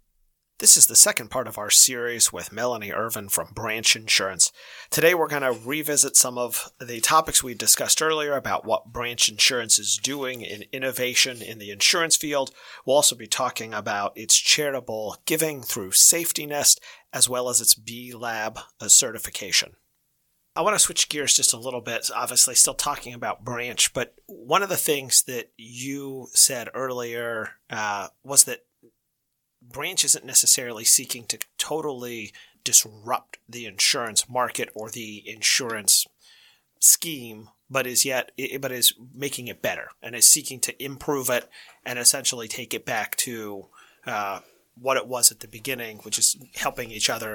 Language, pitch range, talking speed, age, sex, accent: English, 115-140 Hz, 160 wpm, 40-59, male, American